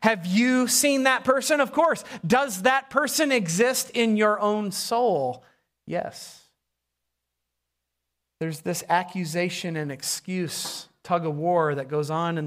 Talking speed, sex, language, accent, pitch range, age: 135 wpm, male, English, American, 165-210 Hz, 40-59